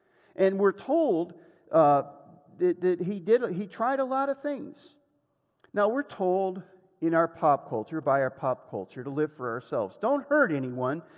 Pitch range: 150-215 Hz